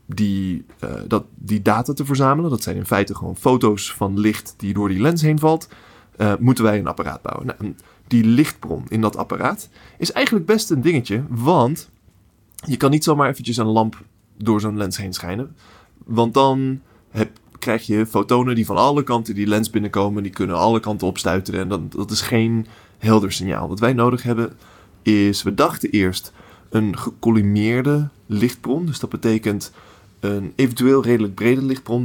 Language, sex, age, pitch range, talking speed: Dutch, male, 20-39, 100-125 Hz, 180 wpm